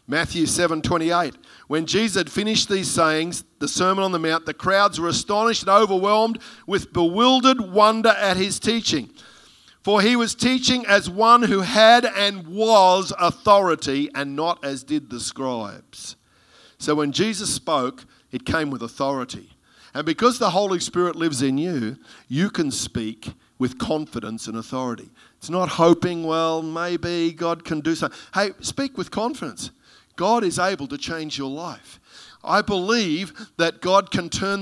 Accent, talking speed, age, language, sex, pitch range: Australian, 160 wpm, 50-69, English, male, 170-235 Hz